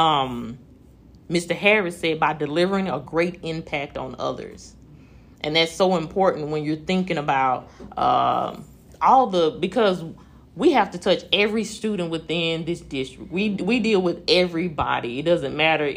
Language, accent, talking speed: English, American, 155 wpm